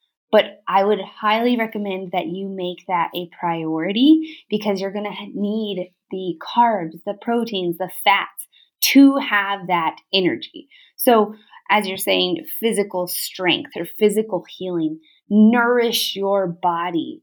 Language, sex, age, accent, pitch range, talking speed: English, female, 20-39, American, 180-245 Hz, 130 wpm